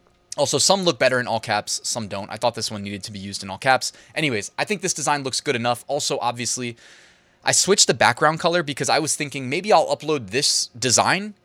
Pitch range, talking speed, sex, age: 115-160 Hz, 230 wpm, male, 20-39